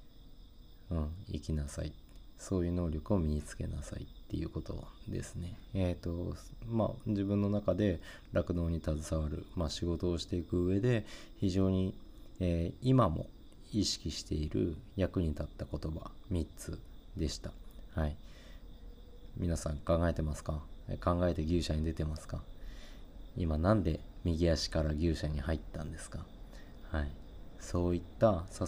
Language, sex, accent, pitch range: Japanese, male, native, 80-95 Hz